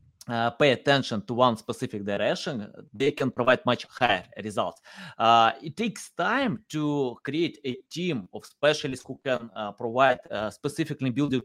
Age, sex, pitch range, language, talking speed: 20-39, male, 120-155 Hz, English, 155 wpm